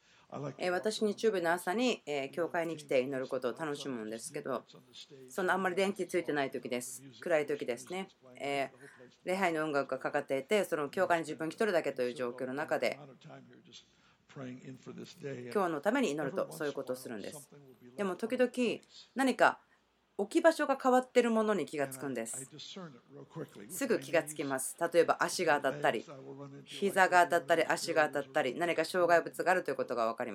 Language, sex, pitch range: Japanese, female, 145-225 Hz